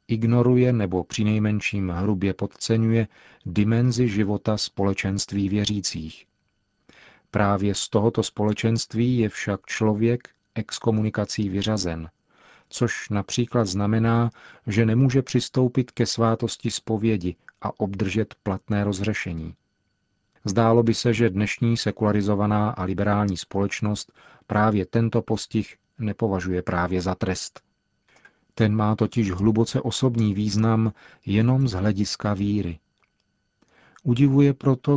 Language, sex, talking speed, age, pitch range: Czech, male, 105 wpm, 40-59, 100-115 Hz